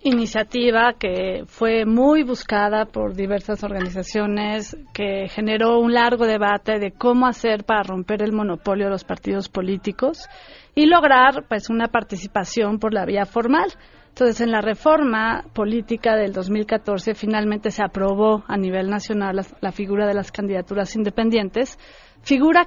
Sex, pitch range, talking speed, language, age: female, 205-245 Hz, 140 wpm, Spanish, 30-49